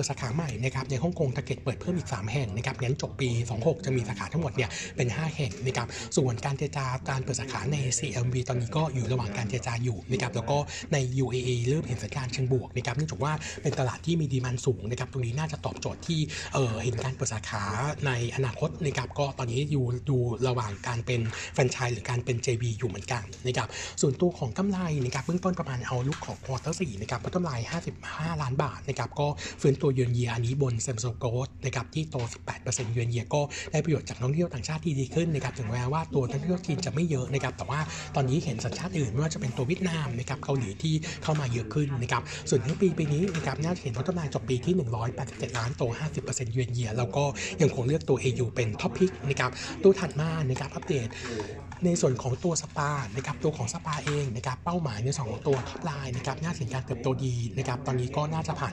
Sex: male